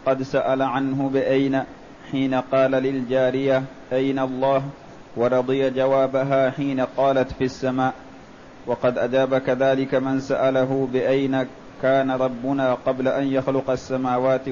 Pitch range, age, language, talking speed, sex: 130-135 Hz, 30-49, Arabic, 110 wpm, male